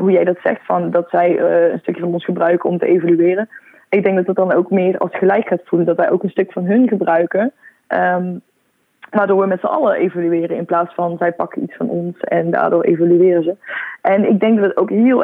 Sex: female